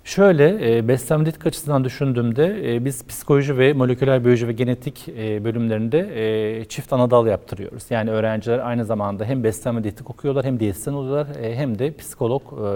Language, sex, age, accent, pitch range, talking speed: Turkish, male, 40-59, native, 110-135 Hz, 170 wpm